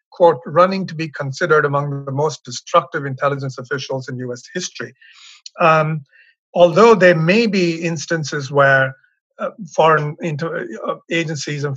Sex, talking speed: male, 135 wpm